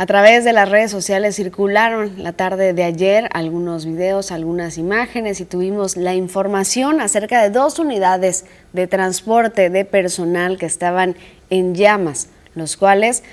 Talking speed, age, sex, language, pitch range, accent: 150 wpm, 20-39, female, Spanish, 180-210 Hz, Mexican